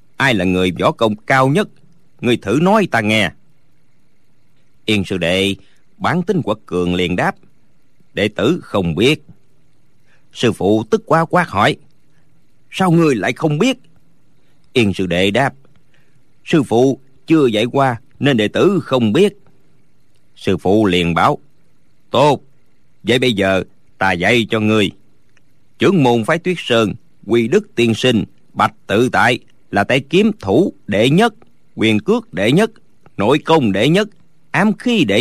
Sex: male